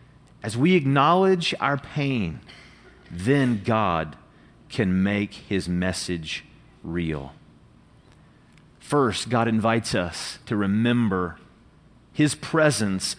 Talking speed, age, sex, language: 90 wpm, 40-59, male, English